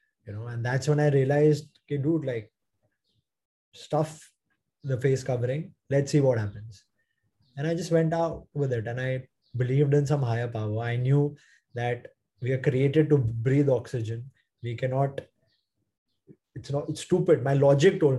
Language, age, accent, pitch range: English, 20-39, Indian, 125-155 Hz